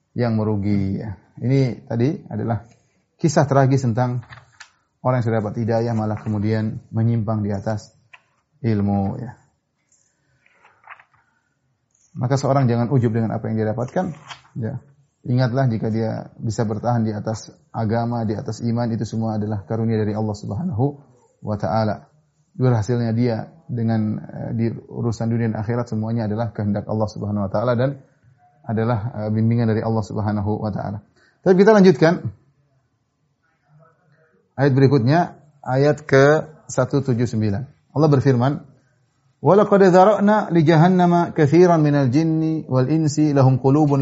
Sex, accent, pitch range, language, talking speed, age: male, native, 115-145 Hz, Indonesian, 125 wpm, 30-49